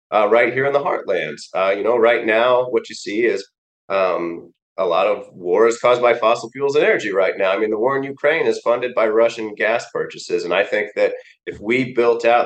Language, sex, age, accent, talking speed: English, male, 30-49, American, 235 wpm